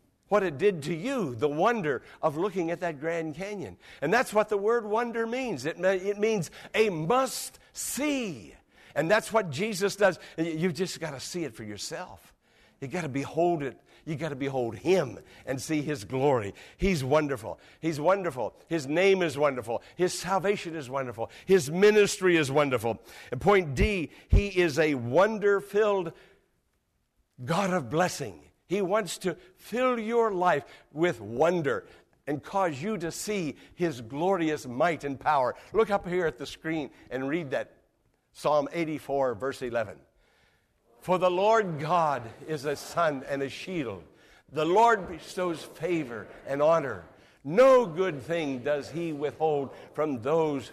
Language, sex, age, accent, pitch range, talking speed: English, male, 60-79, American, 140-190 Hz, 160 wpm